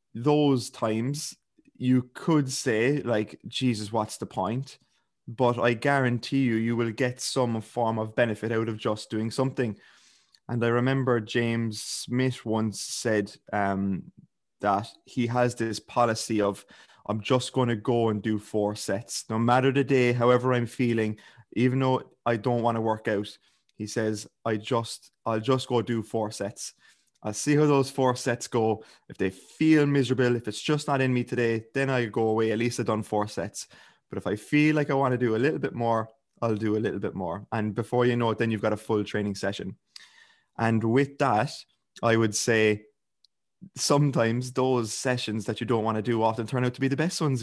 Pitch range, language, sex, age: 110-130 Hz, English, male, 20-39